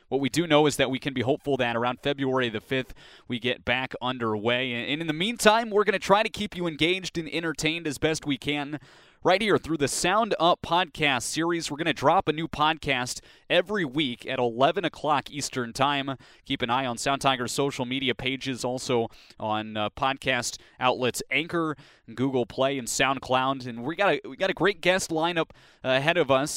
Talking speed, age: 205 wpm, 20-39